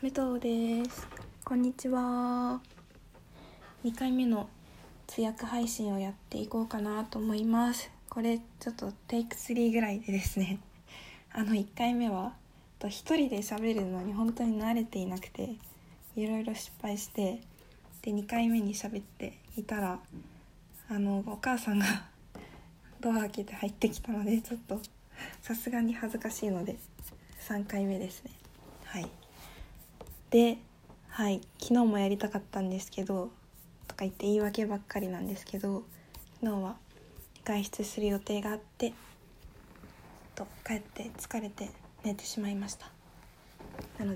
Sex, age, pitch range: female, 20-39, 200-235 Hz